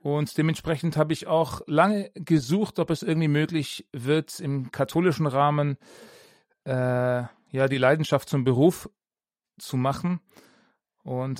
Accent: German